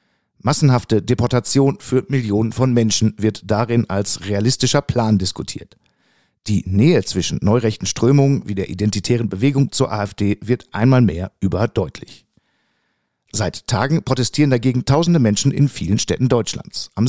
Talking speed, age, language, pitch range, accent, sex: 135 wpm, 50-69, German, 105-130 Hz, German, male